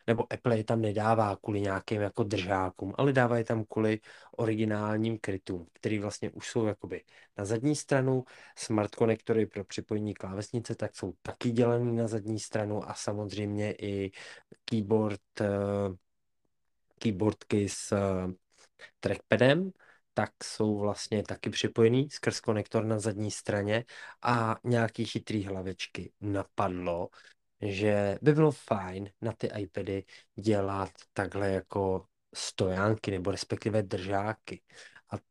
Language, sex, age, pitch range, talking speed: Czech, male, 20-39, 100-115 Hz, 125 wpm